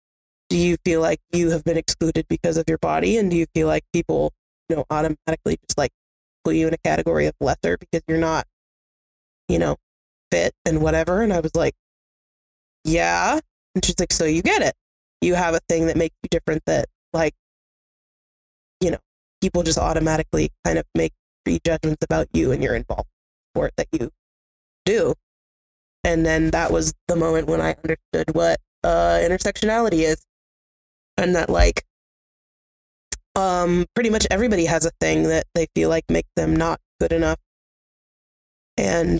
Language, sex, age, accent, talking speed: English, female, 20-39, American, 175 wpm